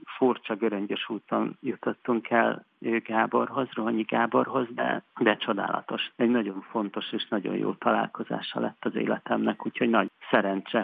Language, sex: Hungarian, male